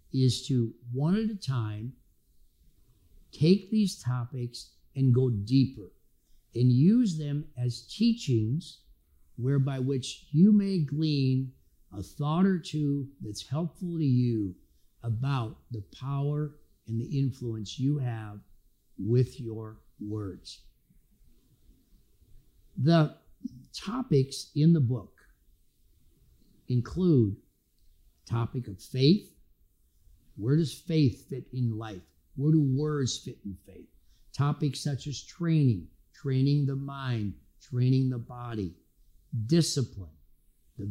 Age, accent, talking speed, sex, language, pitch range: 50-69, American, 110 wpm, male, English, 110-150 Hz